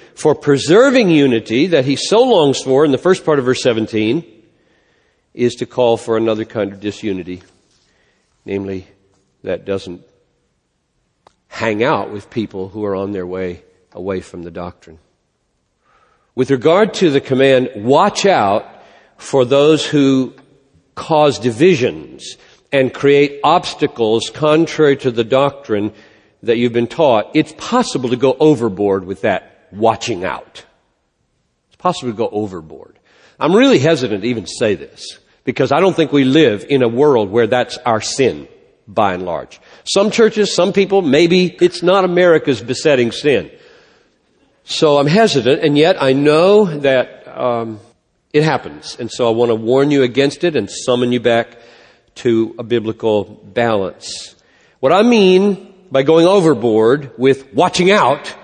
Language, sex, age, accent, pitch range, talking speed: English, male, 50-69, American, 110-155 Hz, 150 wpm